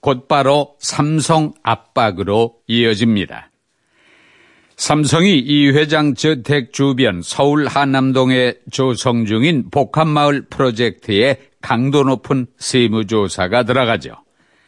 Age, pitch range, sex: 50-69, 125-150 Hz, male